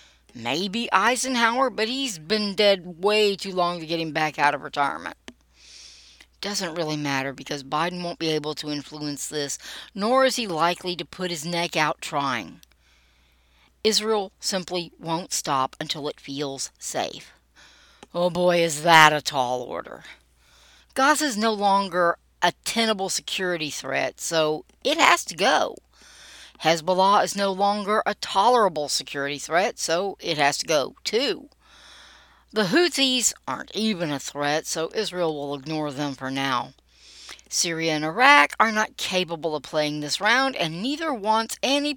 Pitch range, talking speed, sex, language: 150-205 Hz, 150 wpm, female, English